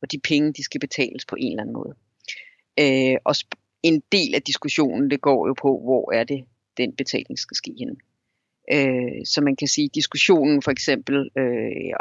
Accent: native